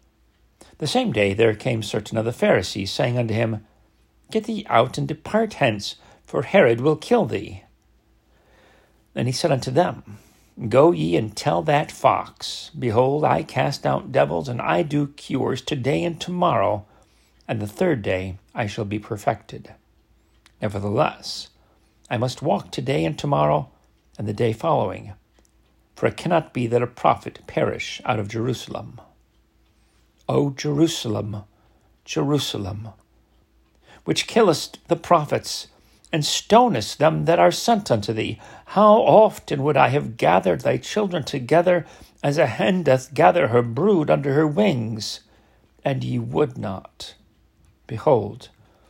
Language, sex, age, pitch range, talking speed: English, male, 60-79, 105-145 Hz, 140 wpm